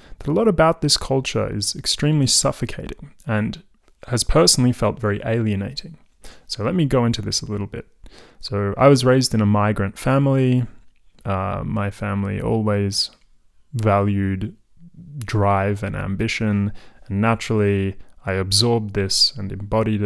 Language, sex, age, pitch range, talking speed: English, male, 20-39, 100-120 Hz, 140 wpm